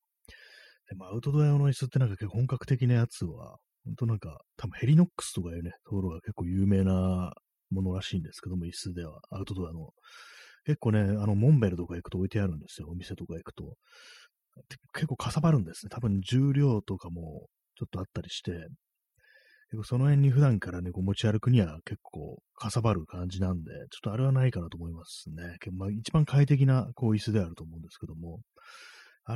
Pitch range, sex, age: 90-125 Hz, male, 30-49